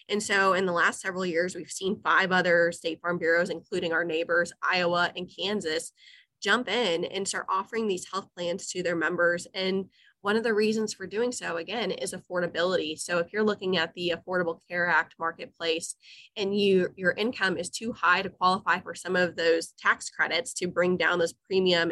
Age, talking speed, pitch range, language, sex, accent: 20-39, 195 wpm, 175-200 Hz, English, female, American